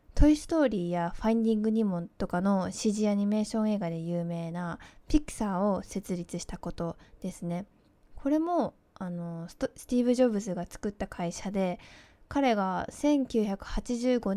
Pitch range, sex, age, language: 175-235 Hz, female, 20-39, Japanese